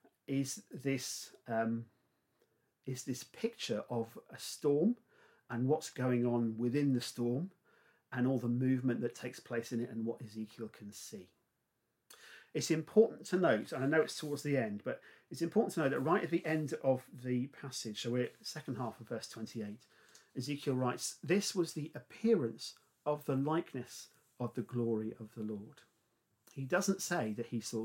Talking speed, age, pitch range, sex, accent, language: 180 wpm, 50-69, 115-150 Hz, male, British, English